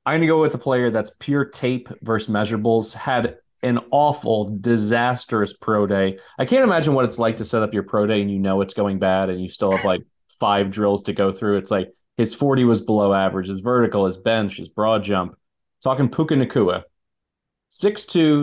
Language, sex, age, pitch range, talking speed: English, male, 30-49, 100-125 Hz, 210 wpm